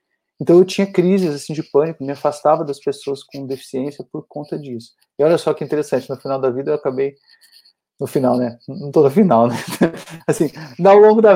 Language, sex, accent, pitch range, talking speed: Portuguese, male, Brazilian, 135-185 Hz, 205 wpm